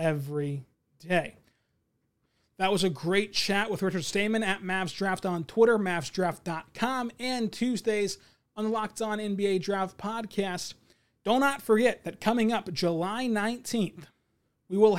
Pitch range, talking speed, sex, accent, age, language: 180-225 Hz, 140 wpm, male, American, 30-49, English